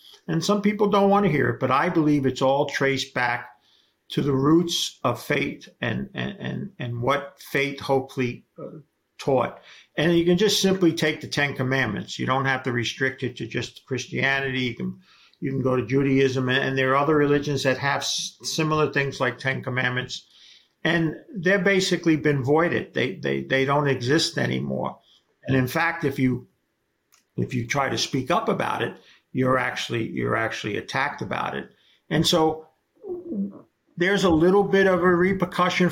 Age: 50-69